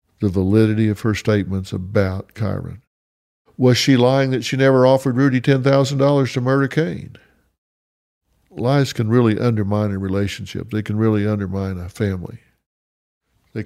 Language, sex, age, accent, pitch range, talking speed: English, male, 50-69, American, 100-135 Hz, 145 wpm